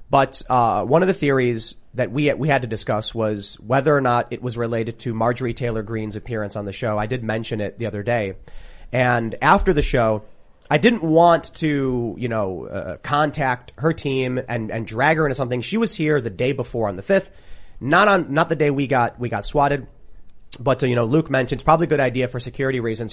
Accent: American